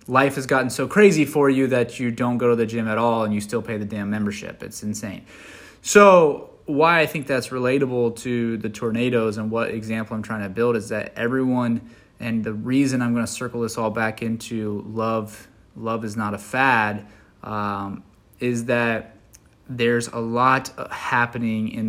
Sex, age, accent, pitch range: male, 20-39, American, 105-120 Hz